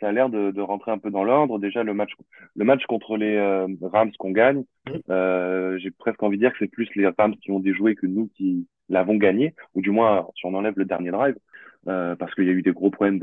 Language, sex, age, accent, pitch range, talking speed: French, male, 20-39, French, 95-105 Hz, 265 wpm